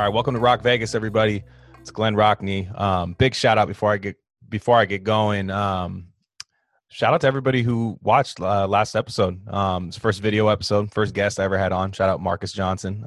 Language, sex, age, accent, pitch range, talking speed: English, male, 20-39, American, 95-110 Hz, 215 wpm